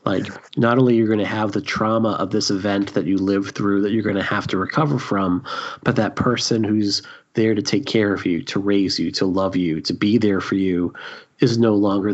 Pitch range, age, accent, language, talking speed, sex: 100-115 Hz, 30-49, American, English, 240 wpm, male